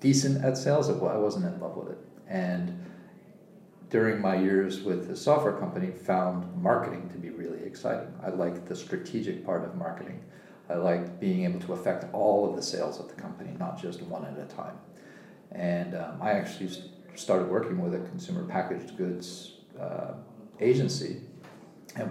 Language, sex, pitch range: English, male, 90-150 Hz